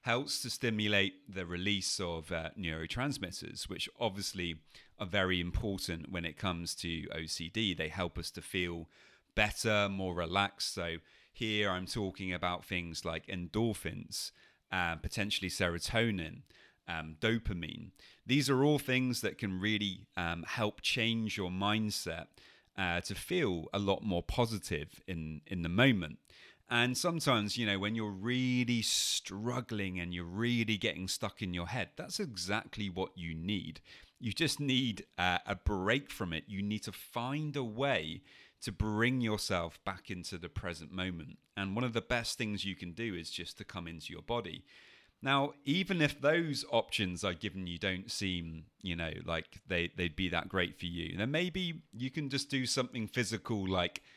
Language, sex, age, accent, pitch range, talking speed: English, male, 30-49, British, 90-115 Hz, 165 wpm